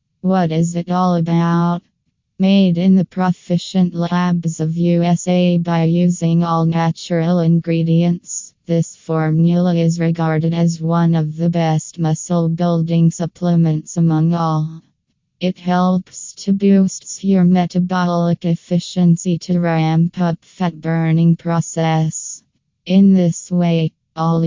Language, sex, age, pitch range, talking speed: English, female, 20-39, 165-175 Hz, 115 wpm